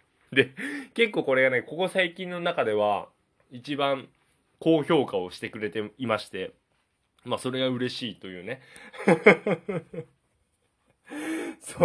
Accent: native